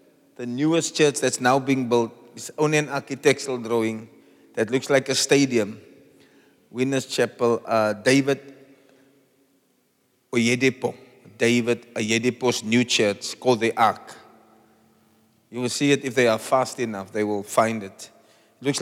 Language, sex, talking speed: English, male, 135 wpm